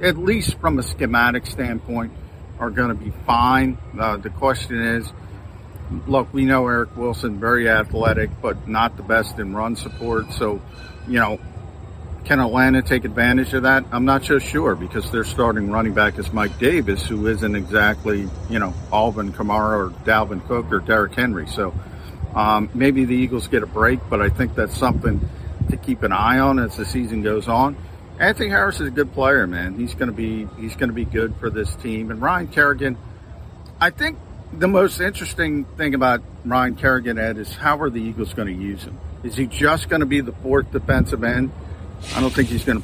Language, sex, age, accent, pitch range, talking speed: English, male, 50-69, American, 100-125 Hz, 195 wpm